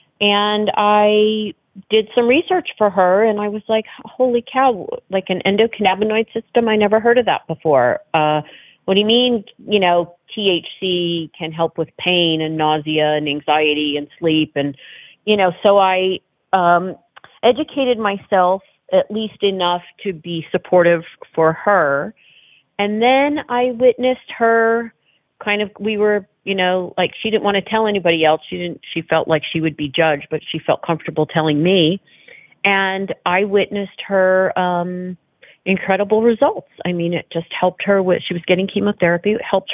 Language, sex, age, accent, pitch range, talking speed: English, female, 40-59, American, 160-210 Hz, 165 wpm